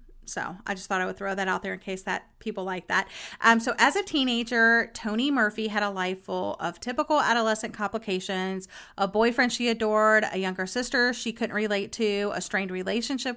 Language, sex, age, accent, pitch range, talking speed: English, female, 30-49, American, 200-240 Hz, 200 wpm